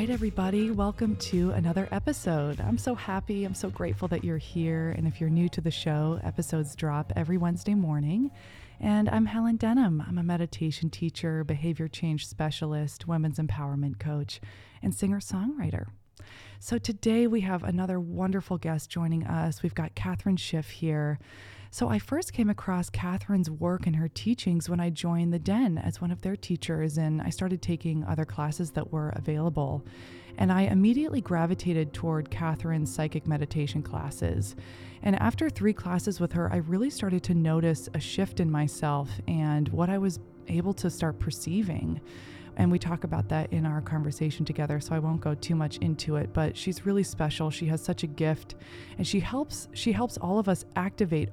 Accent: American